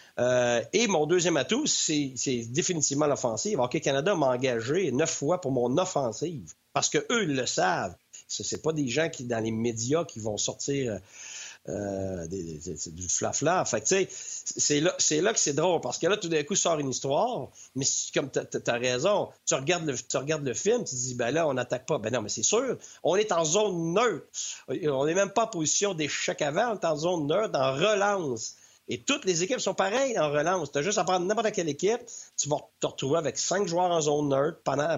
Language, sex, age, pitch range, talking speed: French, male, 50-69, 130-180 Hz, 225 wpm